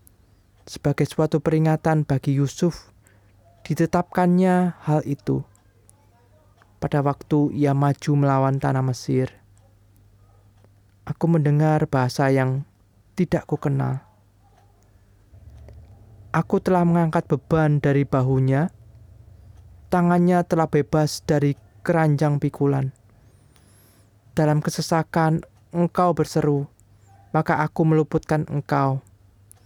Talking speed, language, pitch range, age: 85 wpm, Indonesian, 100-155 Hz, 20-39